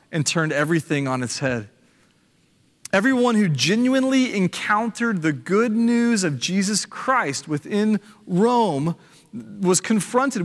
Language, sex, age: English, male, 30-49